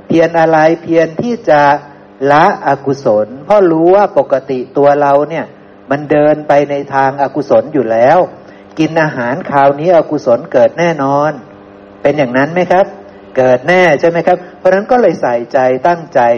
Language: Thai